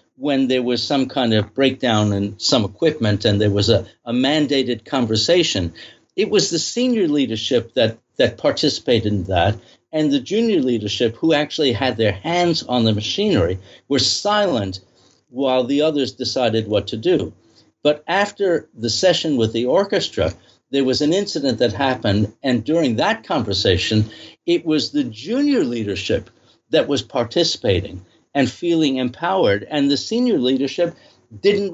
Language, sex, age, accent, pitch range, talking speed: English, male, 60-79, American, 110-150 Hz, 155 wpm